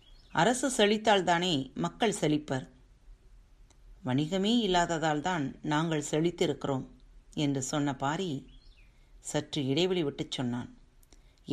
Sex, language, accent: female, Tamil, native